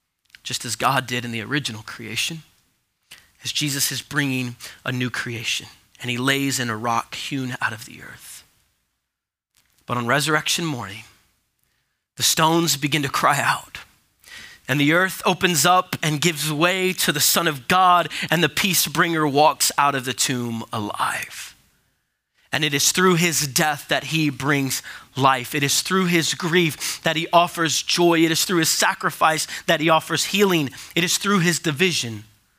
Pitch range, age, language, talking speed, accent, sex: 135-185 Hz, 20-39, English, 170 wpm, American, male